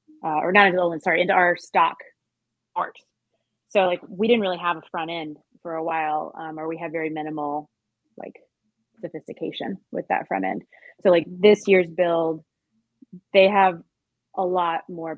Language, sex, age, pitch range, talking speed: English, female, 20-39, 155-190 Hz, 180 wpm